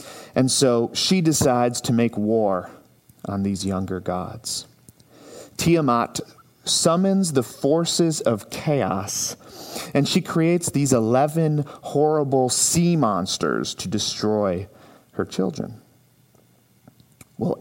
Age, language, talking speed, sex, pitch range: 40-59, English, 100 wpm, male, 110-145 Hz